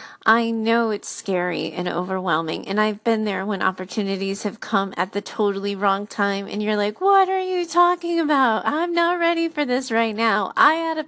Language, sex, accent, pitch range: English, female, American, 200-235 Hz